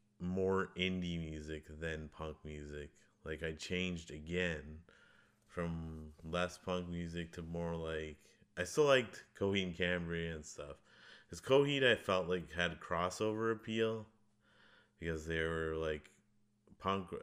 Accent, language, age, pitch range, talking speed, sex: American, English, 20-39, 80-90 Hz, 130 wpm, male